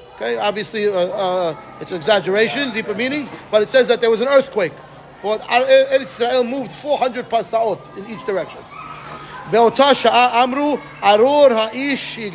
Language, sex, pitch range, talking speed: English, male, 215-260 Hz, 145 wpm